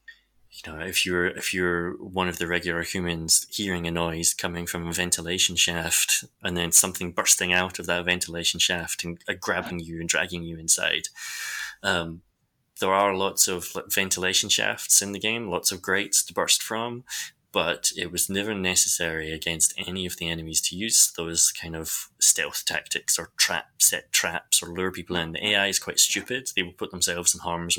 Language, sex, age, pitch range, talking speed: English, male, 20-39, 85-95 Hz, 185 wpm